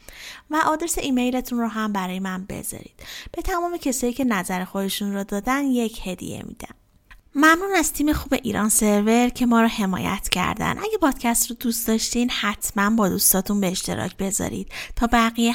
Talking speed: 165 wpm